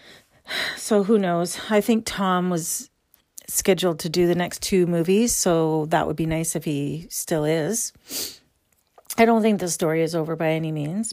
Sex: female